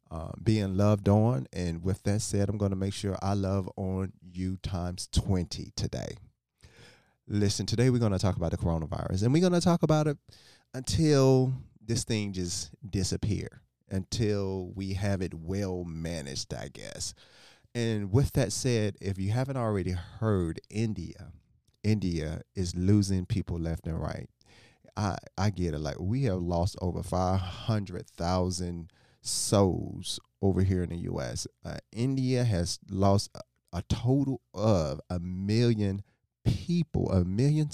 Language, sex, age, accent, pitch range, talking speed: English, male, 30-49, American, 90-120 Hz, 150 wpm